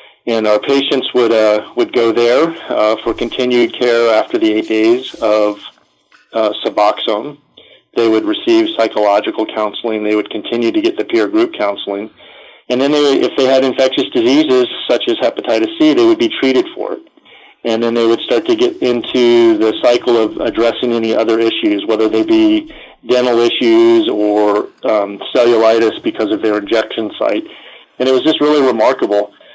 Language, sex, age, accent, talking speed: English, male, 40-59, American, 175 wpm